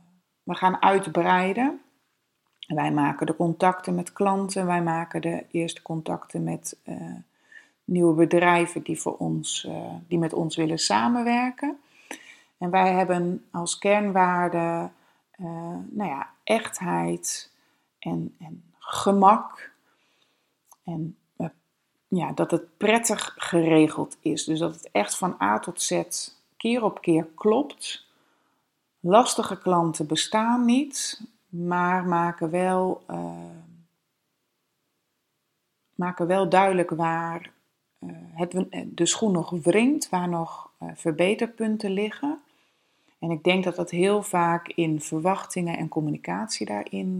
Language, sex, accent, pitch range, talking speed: Dutch, female, Dutch, 165-195 Hz, 110 wpm